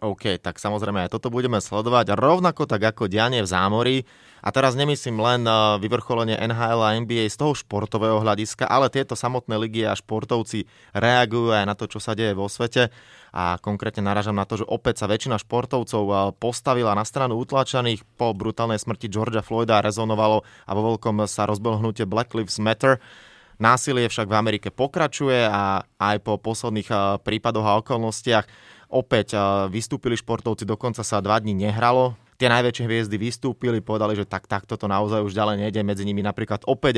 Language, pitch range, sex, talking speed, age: Slovak, 105-120 Hz, male, 170 wpm, 20-39